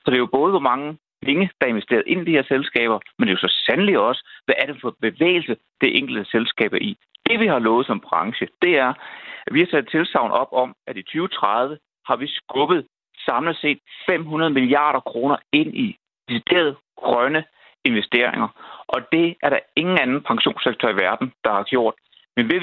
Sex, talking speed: male, 205 wpm